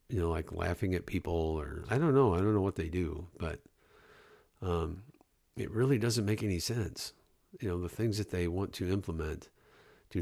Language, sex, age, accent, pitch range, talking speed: English, male, 50-69, American, 85-105 Hz, 200 wpm